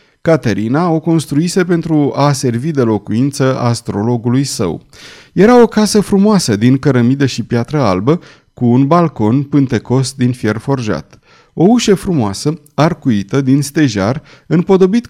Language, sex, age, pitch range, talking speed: Romanian, male, 30-49, 115-155 Hz, 130 wpm